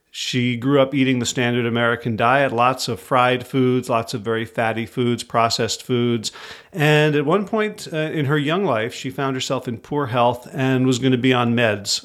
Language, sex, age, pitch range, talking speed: English, male, 40-59, 120-145 Hz, 200 wpm